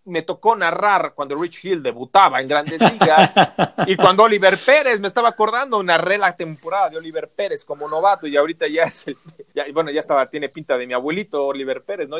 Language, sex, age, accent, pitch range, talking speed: Spanish, male, 30-49, Mexican, 140-195 Hz, 205 wpm